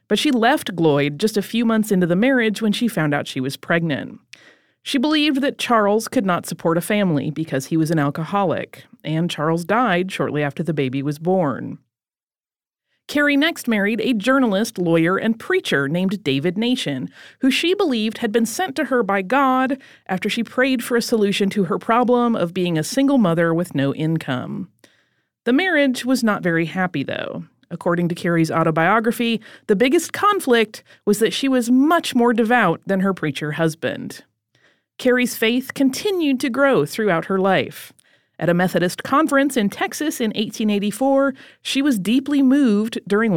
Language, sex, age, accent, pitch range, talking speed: English, female, 30-49, American, 170-250 Hz, 175 wpm